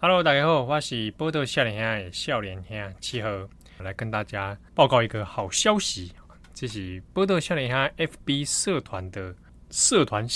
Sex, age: male, 20-39